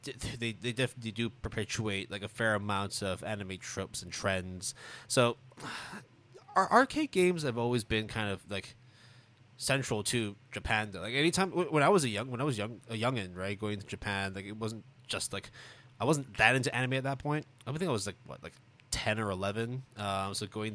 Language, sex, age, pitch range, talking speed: English, male, 20-39, 100-125 Hz, 200 wpm